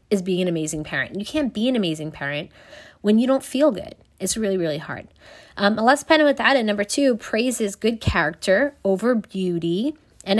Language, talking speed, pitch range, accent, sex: English, 185 wpm, 175-230 Hz, American, female